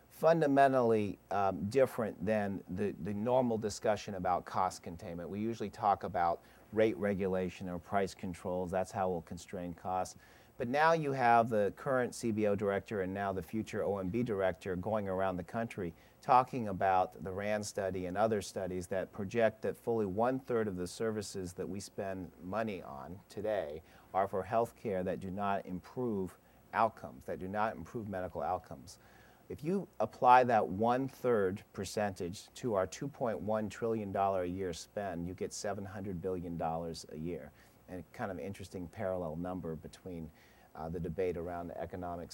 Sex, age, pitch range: male, 40-59, 90-115 Hz